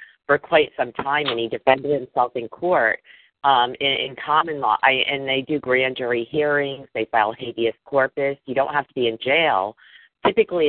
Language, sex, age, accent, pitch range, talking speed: English, female, 40-59, American, 120-145 Hz, 185 wpm